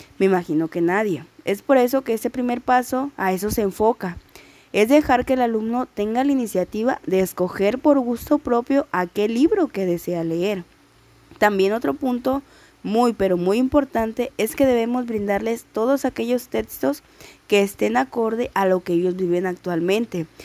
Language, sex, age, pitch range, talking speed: Spanish, female, 20-39, 185-240 Hz, 165 wpm